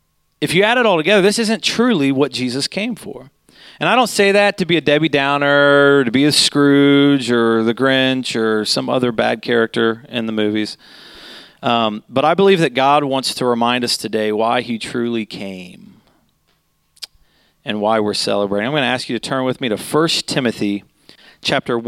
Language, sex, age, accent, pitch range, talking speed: English, male, 40-59, American, 115-170 Hz, 190 wpm